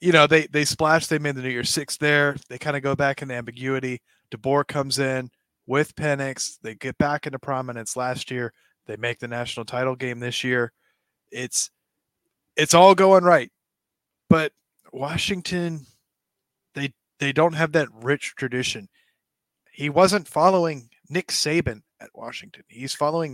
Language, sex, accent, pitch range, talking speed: English, male, American, 125-155 Hz, 160 wpm